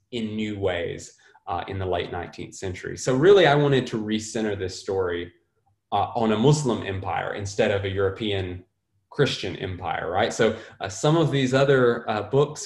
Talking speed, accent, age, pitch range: 175 wpm, American, 20-39, 95-125 Hz